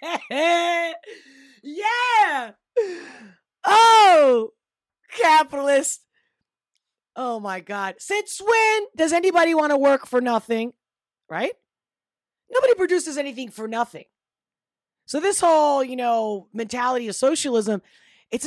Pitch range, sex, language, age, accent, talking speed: 220-335 Hz, female, English, 30-49, American, 95 wpm